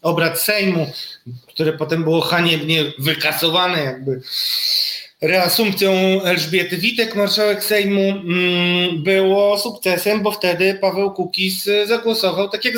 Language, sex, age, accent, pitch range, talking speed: Polish, male, 30-49, native, 150-195 Hz, 105 wpm